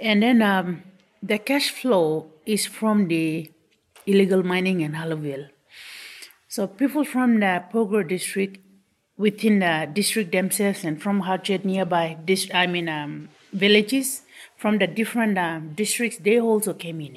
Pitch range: 165-200 Hz